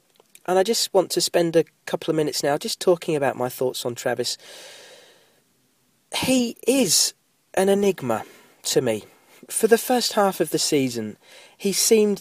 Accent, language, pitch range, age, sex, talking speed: British, English, 125-185 Hz, 40-59, male, 160 wpm